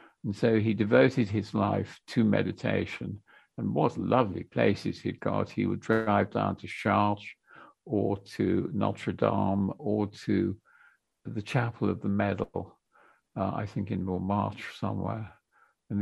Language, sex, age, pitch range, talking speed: English, male, 50-69, 100-115 Hz, 140 wpm